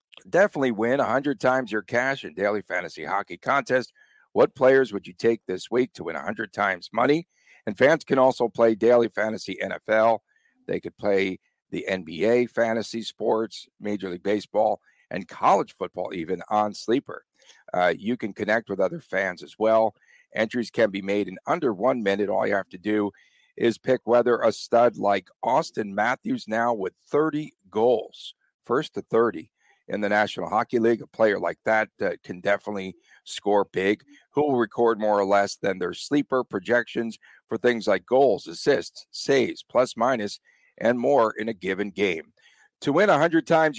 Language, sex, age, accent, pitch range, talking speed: English, male, 50-69, American, 105-130 Hz, 170 wpm